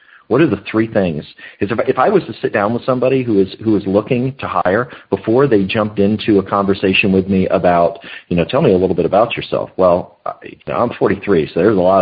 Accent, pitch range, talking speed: American, 90-115 Hz, 225 wpm